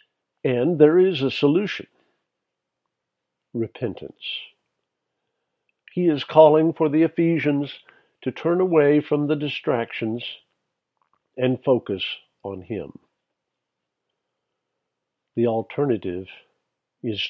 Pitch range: 110-145 Hz